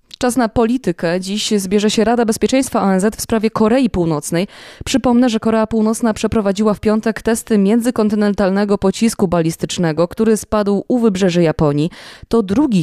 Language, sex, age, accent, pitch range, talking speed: Polish, female, 20-39, native, 180-225 Hz, 145 wpm